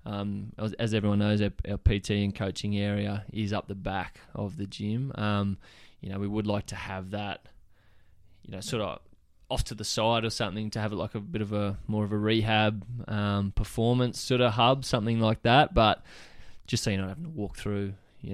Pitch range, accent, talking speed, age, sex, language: 100-110 Hz, Australian, 220 wpm, 20-39, male, English